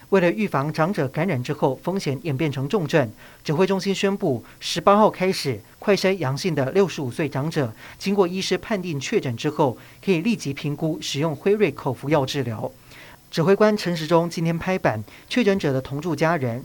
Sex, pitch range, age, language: male, 140-185 Hz, 40-59, Chinese